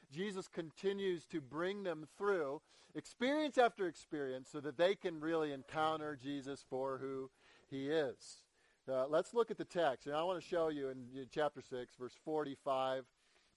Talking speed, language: 165 wpm, English